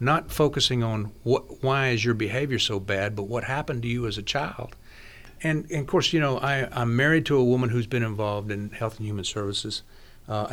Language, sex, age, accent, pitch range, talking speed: English, male, 50-69, American, 105-125 Hz, 220 wpm